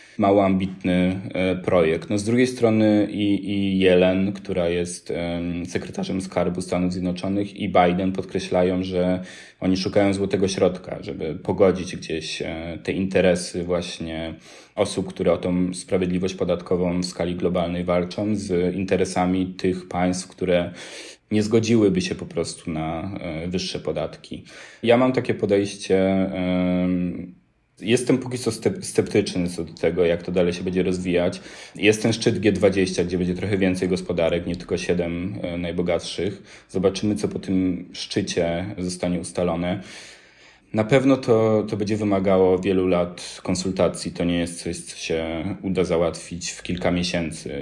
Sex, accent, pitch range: male, native, 90-100 Hz